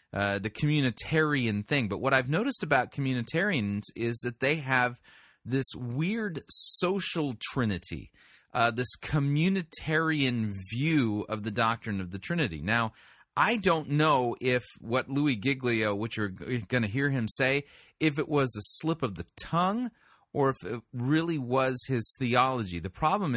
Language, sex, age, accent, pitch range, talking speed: English, male, 30-49, American, 110-145 Hz, 155 wpm